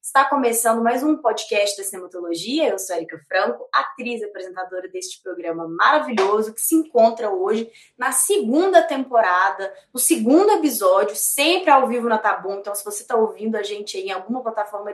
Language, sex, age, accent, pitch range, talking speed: Portuguese, female, 20-39, Brazilian, 210-285 Hz, 170 wpm